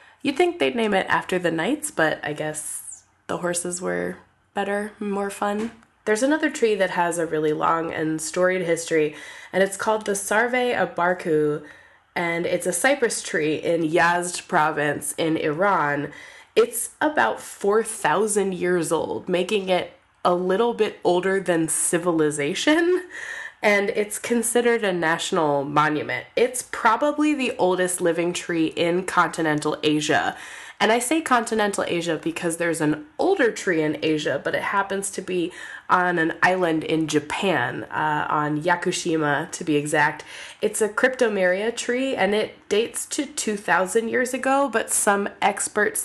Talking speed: 150 wpm